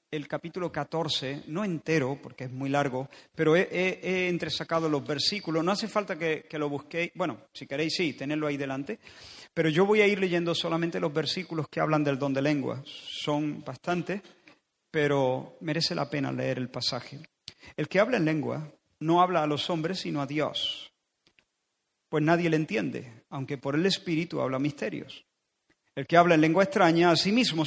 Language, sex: Spanish, male